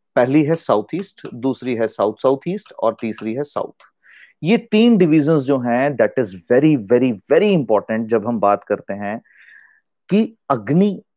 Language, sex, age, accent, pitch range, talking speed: Hindi, male, 30-49, native, 115-170 Hz, 150 wpm